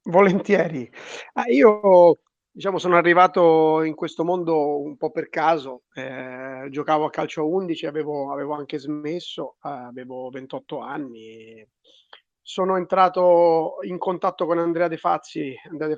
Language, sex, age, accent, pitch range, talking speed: Italian, male, 30-49, native, 140-170 Hz, 140 wpm